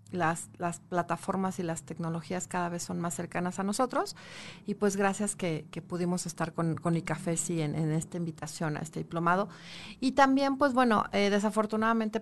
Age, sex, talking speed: 40-59, female, 185 wpm